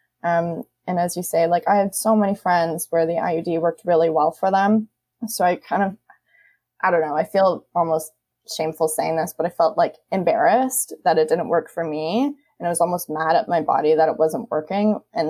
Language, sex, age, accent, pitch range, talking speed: English, female, 20-39, American, 160-195 Hz, 220 wpm